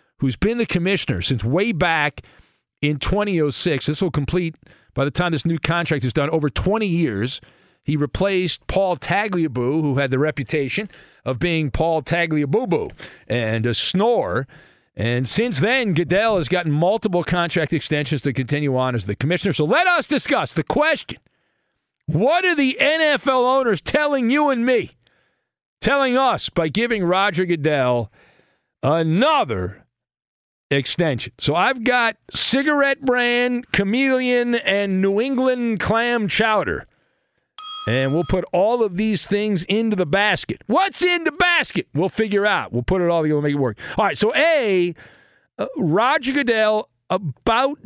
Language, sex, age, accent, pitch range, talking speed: English, male, 50-69, American, 150-230 Hz, 150 wpm